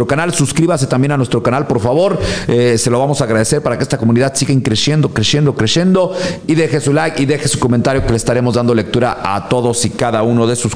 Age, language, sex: 50-69, Spanish, male